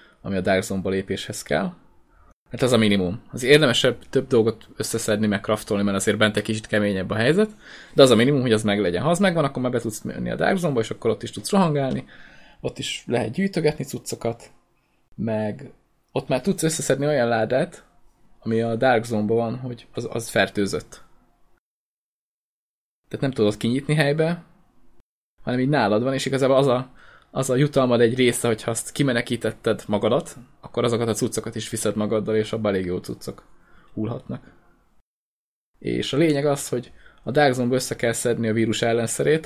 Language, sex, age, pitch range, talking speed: Hungarian, male, 20-39, 110-135 Hz, 180 wpm